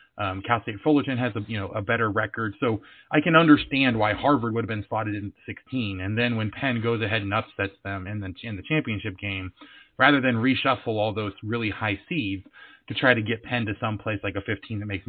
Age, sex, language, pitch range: 30-49, male, English, 100-125 Hz